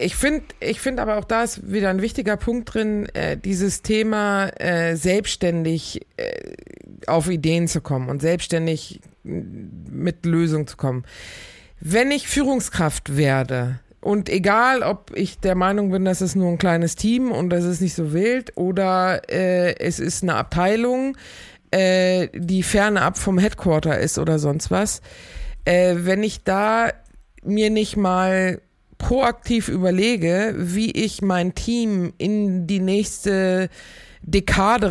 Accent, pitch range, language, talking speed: German, 175-210 Hz, German, 145 wpm